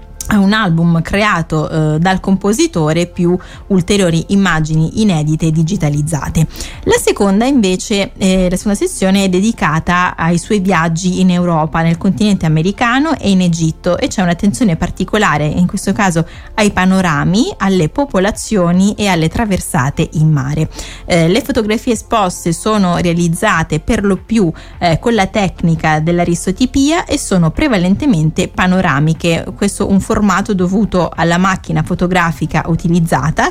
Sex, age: female, 20-39